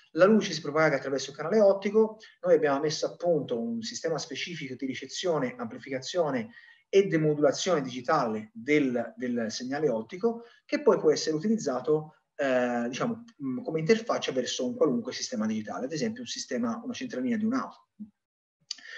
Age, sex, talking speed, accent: 30-49, male, 150 wpm, native